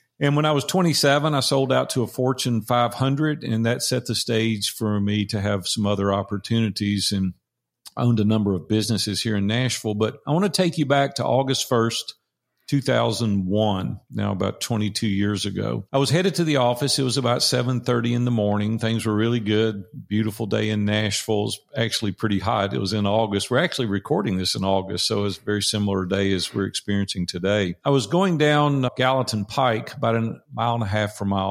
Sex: male